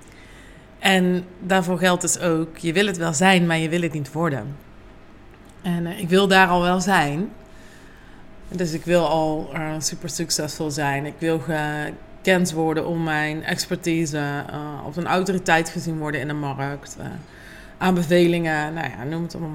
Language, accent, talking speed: Dutch, Dutch, 170 wpm